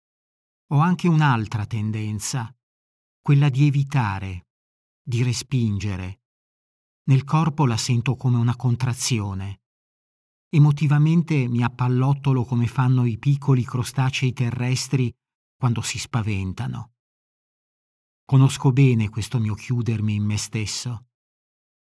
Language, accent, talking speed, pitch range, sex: Italian, native, 100 wpm, 120-145 Hz, male